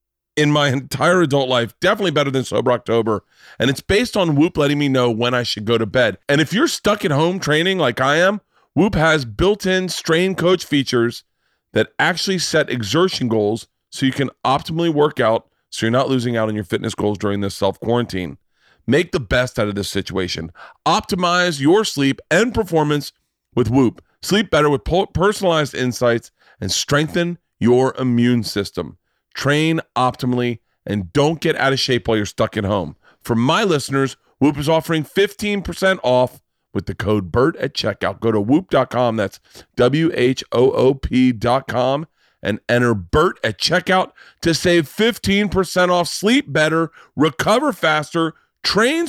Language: English